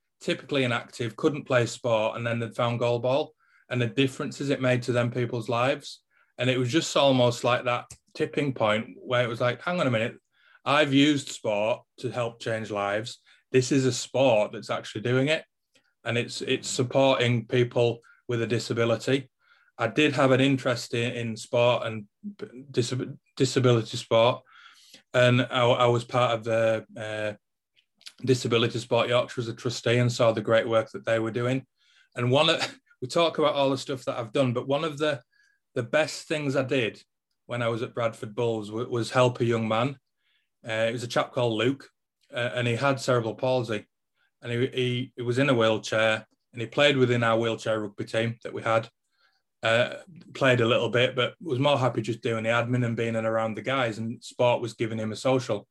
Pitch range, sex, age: 115-135 Hz, male, 20-39